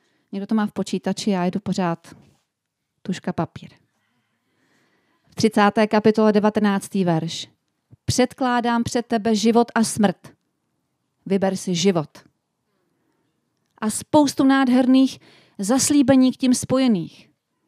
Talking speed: 105 wpm